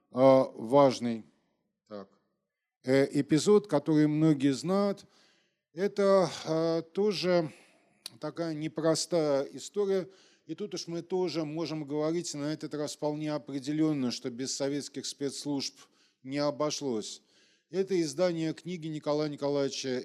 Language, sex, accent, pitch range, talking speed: Russian, male, native, 120-165 Hz, 105 wpm